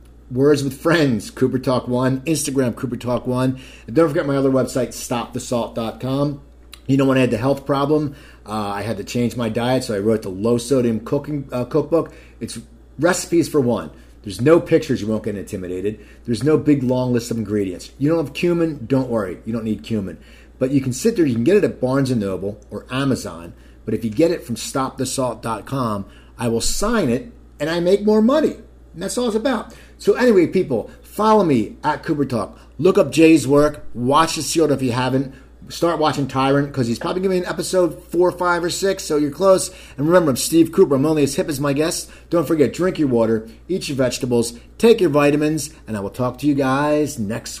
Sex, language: male, English